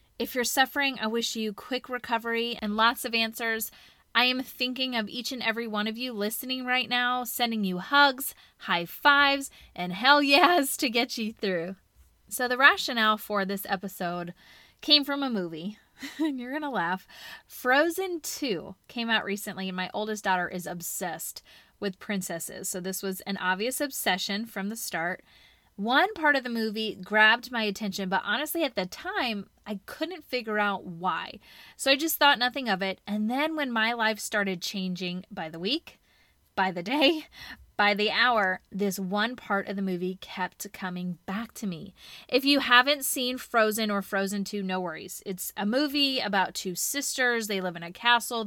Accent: American